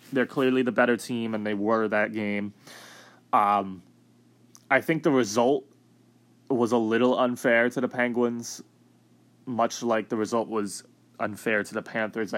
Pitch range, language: 105-125 Hz, English